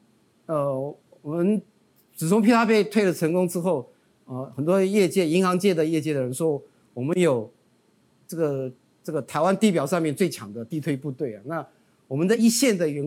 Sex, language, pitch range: male, Chinese, 140-200 Hz